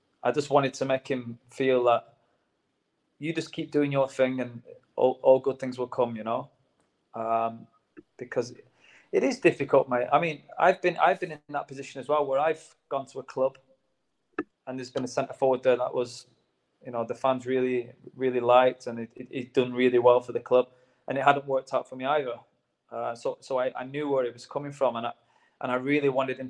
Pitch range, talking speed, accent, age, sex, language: 125-140 Hz, 225 wpm, British, 20-39, male, English